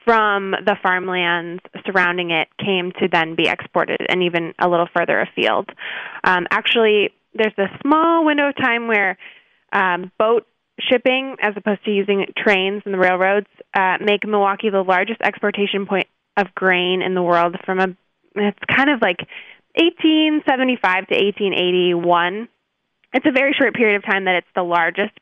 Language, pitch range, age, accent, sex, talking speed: English, 180-210 Hz, 20-39, American, female, 160 wpm